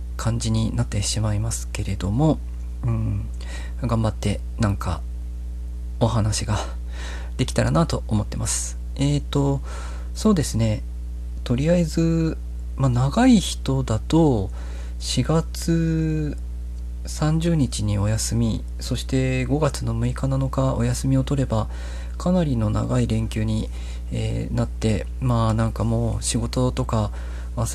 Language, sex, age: Japanese, male, 40-59